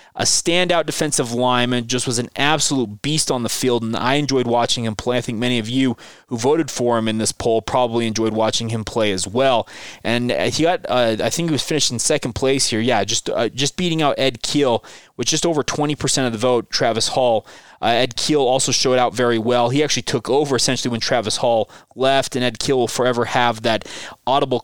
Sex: male